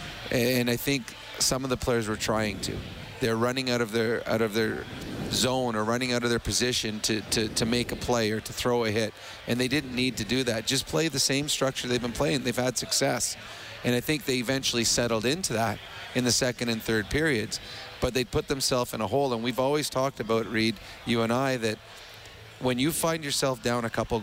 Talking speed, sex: 230 wpm, male